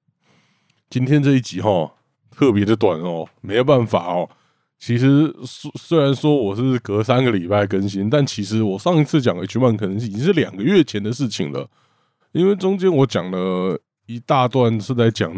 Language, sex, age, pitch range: Chinese, male, 20-39, 95-135 Hz